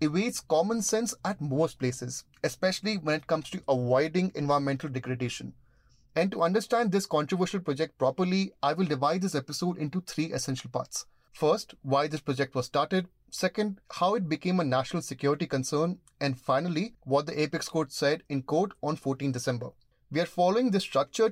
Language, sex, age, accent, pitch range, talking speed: English, male, 30-49, Indian, 140-185 Hz, 170 wpm